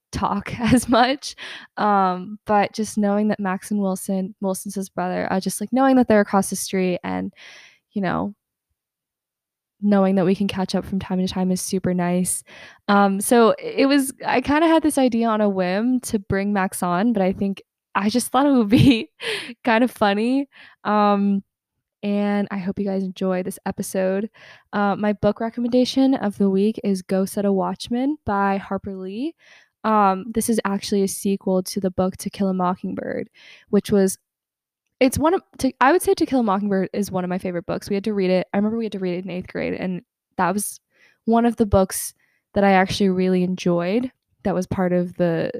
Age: 10-29